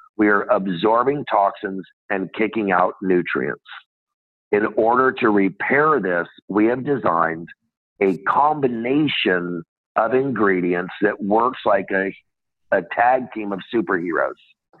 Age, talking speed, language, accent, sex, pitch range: 50-69, 120 wpm, English, American, male, 95-125 Hz